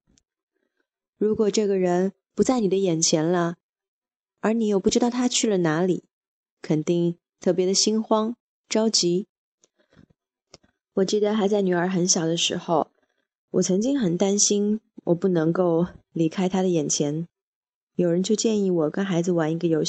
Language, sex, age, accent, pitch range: Chinese, female, 20-39, native, 170-215 Hz